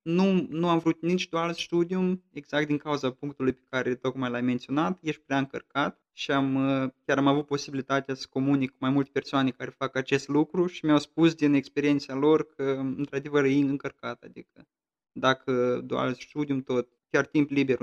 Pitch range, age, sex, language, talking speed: 135-165 Hz, 20-39, male, Romanian, 180 wpm